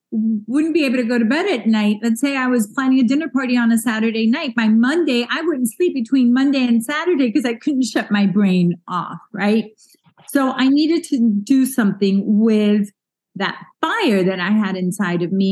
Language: English